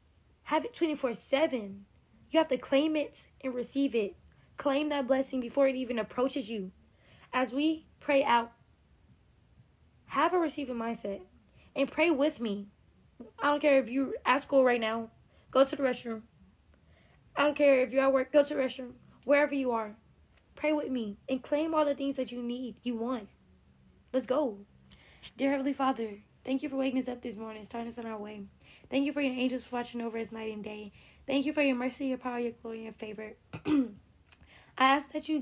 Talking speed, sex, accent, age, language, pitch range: 200 wpm, female, American, 20-39, English, 225-275 Hz